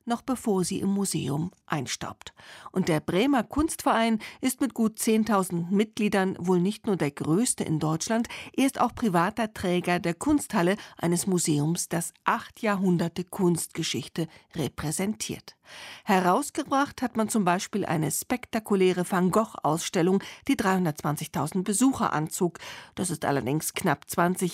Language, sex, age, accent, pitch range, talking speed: German, female, 40-59, German, 170-220 Hz, 130 wpm